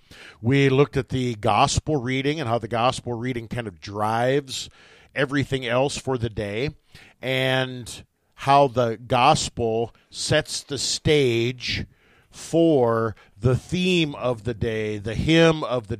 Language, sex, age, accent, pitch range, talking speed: English, male, 50-69, American, 115-140 Hz, 135 wpm